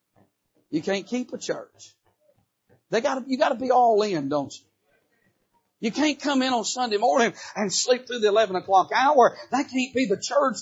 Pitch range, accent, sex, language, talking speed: 180-260 Hz, American, male, English, 200 wpm